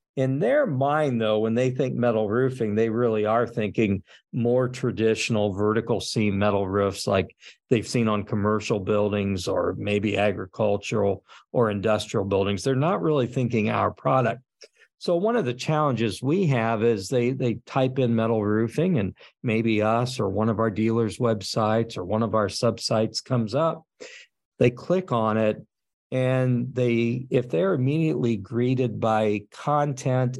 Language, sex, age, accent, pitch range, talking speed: English, male, 50-69, American, 110-135 Hz, 155 wpm